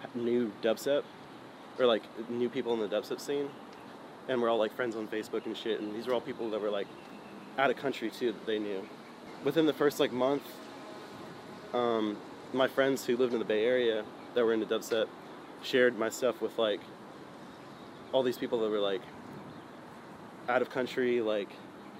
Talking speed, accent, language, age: 185 wpm, American, English, 20-39